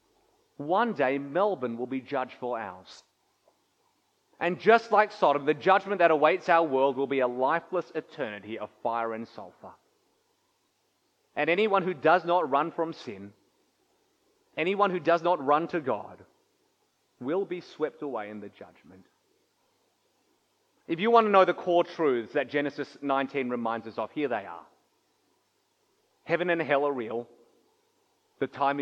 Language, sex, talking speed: English, male, 150 wpm